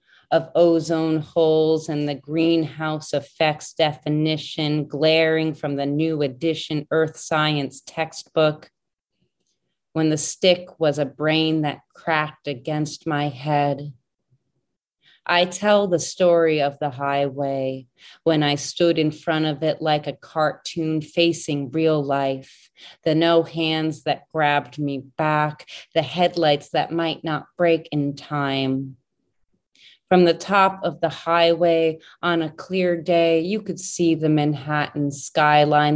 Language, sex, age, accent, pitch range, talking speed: English, female, 30-49, American, 145-165 Hz, 130 wpm